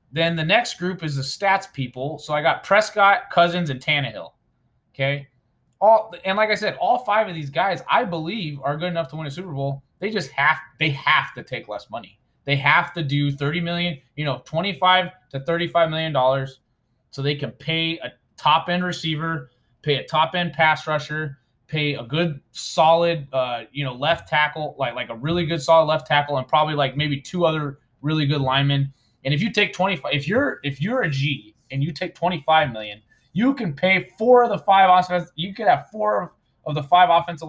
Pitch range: 140-175 Hz